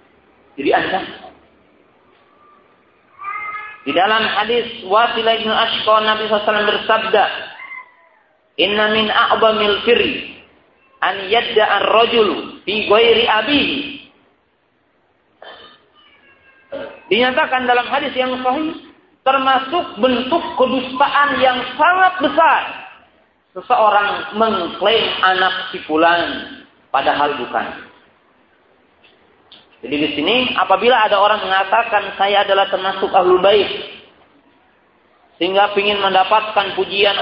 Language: Romanian